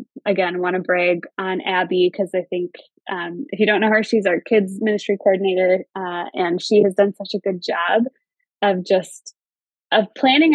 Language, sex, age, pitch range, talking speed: English, female, 20-39, 185-225 Hz, 190 wpm